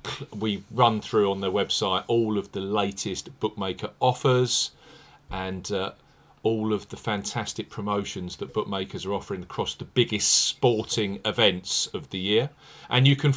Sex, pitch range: male, 105-140 Hz